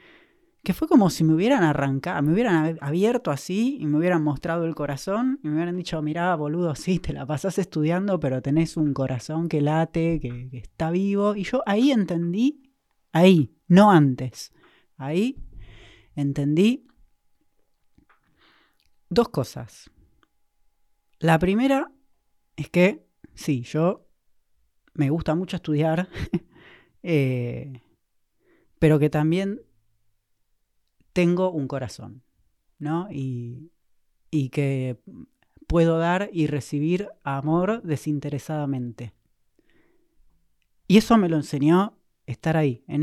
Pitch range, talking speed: 135-185 Hz, 115 wpm